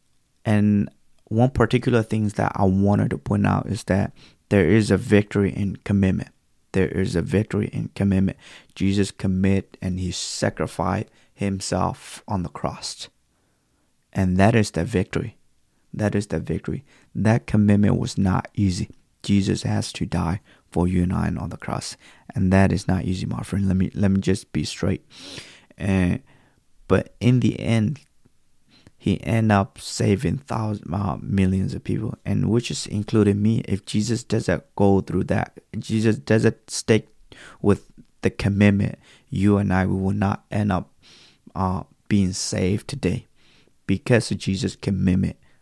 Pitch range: 95-110 Hz